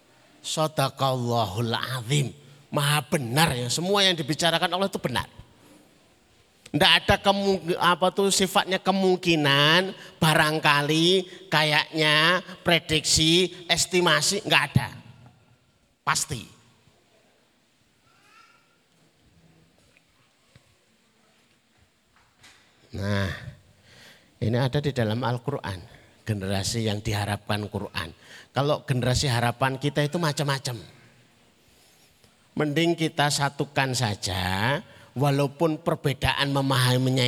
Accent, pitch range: native, 120-175 Hz